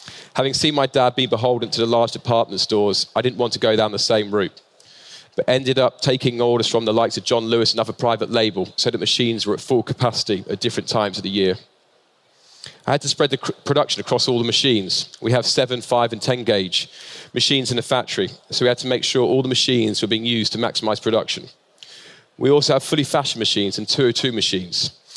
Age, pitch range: 30-49, 115-135 Hz